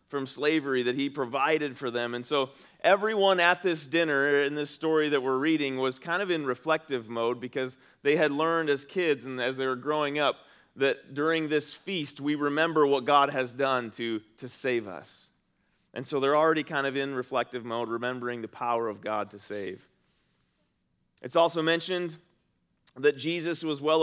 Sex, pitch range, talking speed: male, 135-165 Hz, 185 wpm